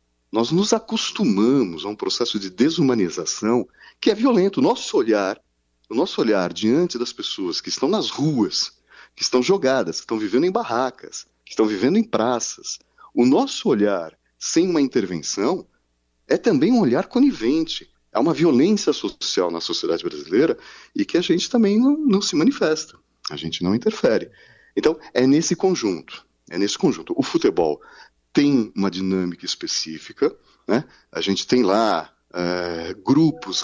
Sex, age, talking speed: male, 40-59, 155 wpm